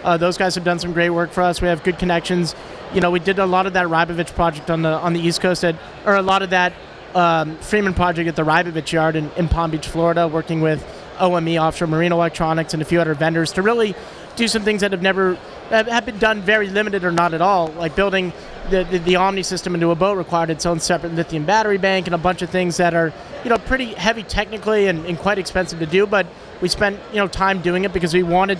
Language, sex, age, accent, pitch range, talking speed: English, male, 30-49, American, 170-195 Hz, 255 wpm